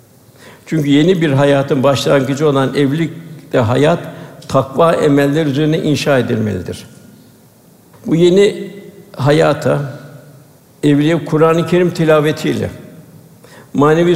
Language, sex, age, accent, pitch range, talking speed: Turkish, male, 60-79, native, 140-165 Hz, 90 wpm